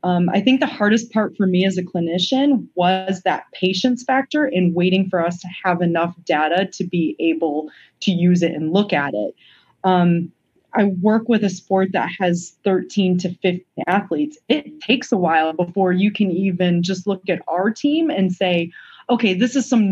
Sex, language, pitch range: female, English, 170-200 Hz